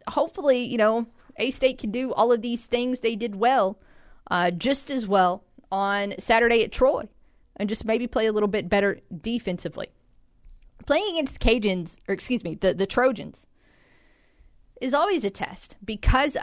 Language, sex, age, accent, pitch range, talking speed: English, female, 40-59, American, 195-260 Hz, 160 wpm